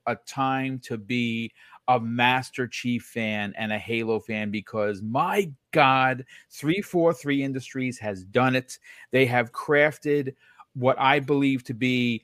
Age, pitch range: 40-59, 120-140 Hz